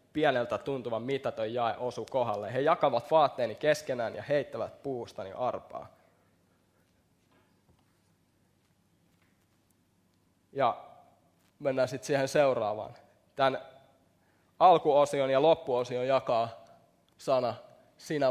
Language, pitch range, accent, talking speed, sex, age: Finnish, 95-140 Hz, native, 85 wpm, male, 20-39